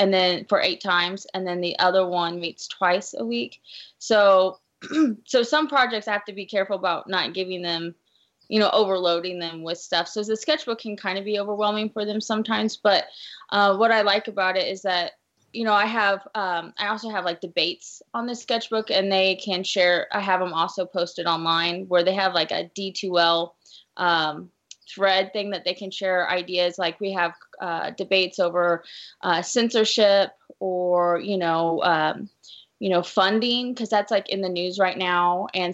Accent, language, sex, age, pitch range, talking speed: American, English, female, 20-39, 180-215 Hz, 190 wpm